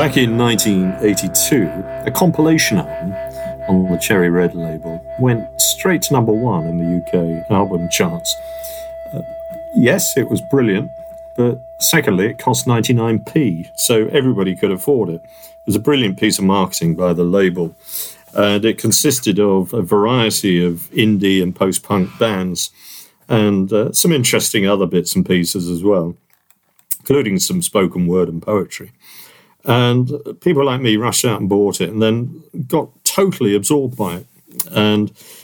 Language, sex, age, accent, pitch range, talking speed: English, male, 50-69, British, 90-130 Hz, 150 wpm